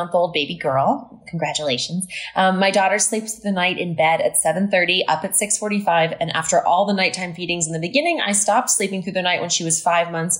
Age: 20-39